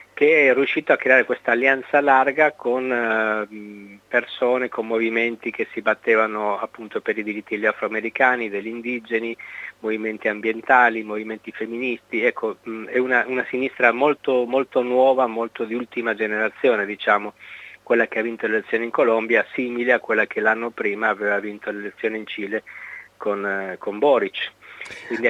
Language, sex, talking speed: Italian, male, 160 wpm